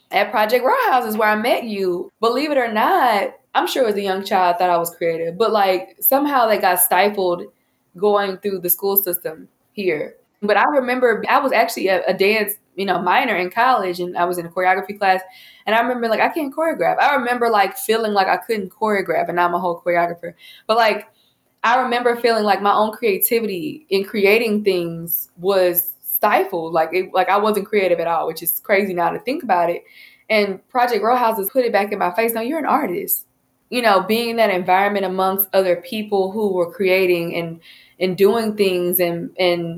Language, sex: English, female